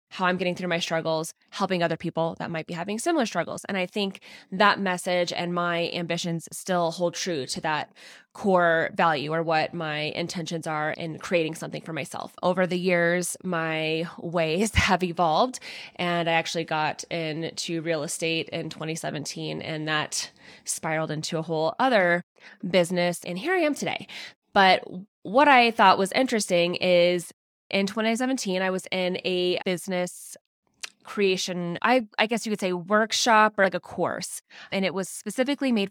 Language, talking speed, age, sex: English, 165 wpm, 20-39, female